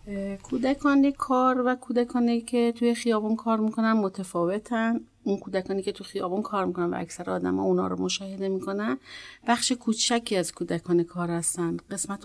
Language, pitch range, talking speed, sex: Persian, 190-225 Hz, 160 wpm, female